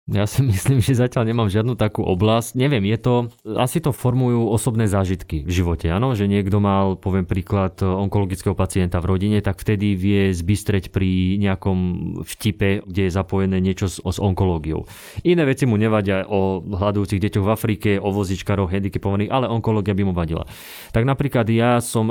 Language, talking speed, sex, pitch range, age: Slovak, 175 wpm, male, 95-120 Hz, 30-49